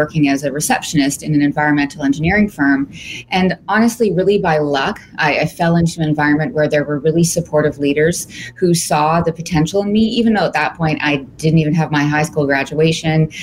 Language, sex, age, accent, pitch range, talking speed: English, female, 30-49, American, 150-180 Hz, 200 wpm